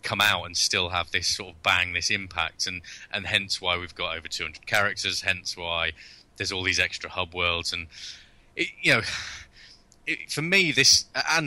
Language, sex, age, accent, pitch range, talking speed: English, male, 20-39, British, 85-110 Hz, 200 wpm